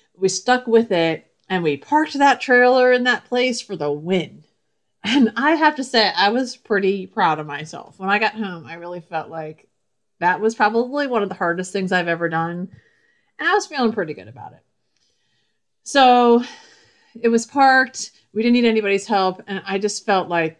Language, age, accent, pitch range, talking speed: English, 40-59, American, 180-235 Hz, 195 wpm